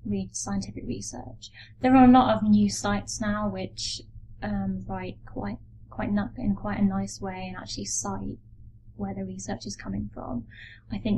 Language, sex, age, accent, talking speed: English, female, 20-39, British, 170 wpm